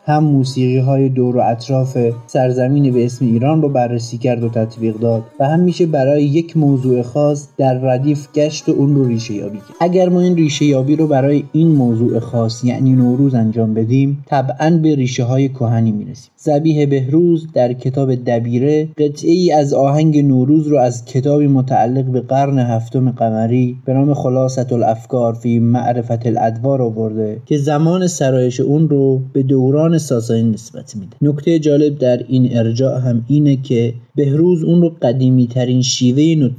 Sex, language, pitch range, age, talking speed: male, Persian, 120-145 Hz, 30-49, 170 wpm